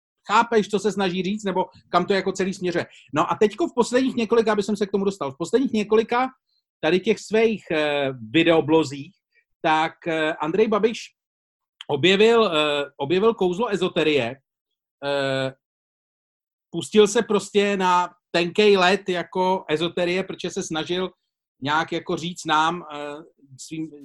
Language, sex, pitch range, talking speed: Czech, male, 155-205 Hz, 130 wpm